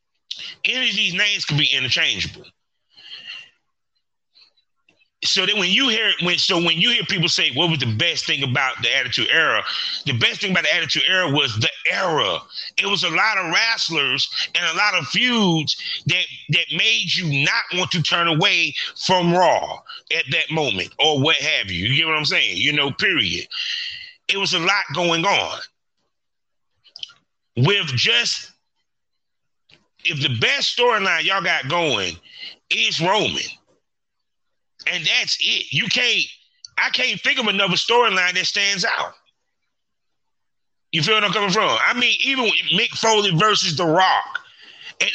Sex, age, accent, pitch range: male, 30-49, American, 160-215 Hz